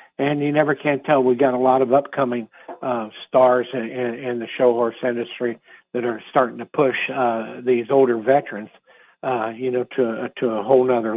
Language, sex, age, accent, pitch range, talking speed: English, male, 60-79, American, 120-135 Hz, 205 wpm